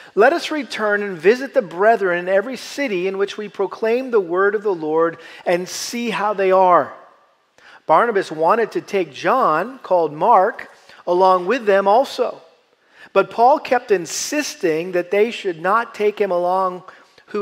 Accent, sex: American, male